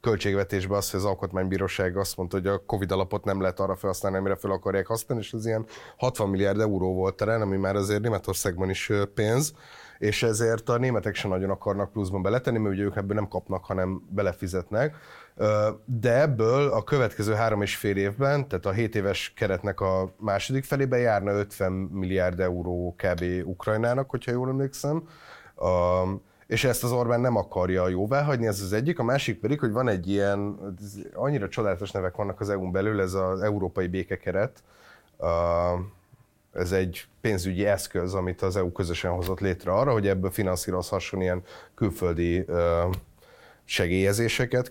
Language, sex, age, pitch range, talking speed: Hungarian, male, 30-49, 95-115 Hz, 160 wpm